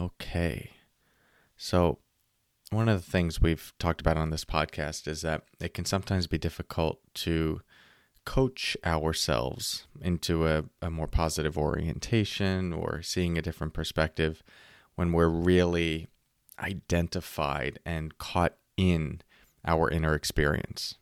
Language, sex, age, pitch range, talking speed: English, male, 30-49, 80-90 Hz, 125 wpm